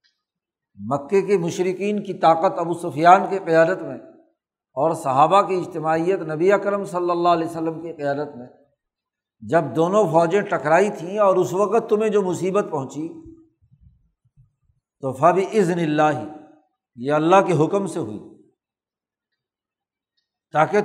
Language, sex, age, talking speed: Urdu, male, 60-79, 130 wpm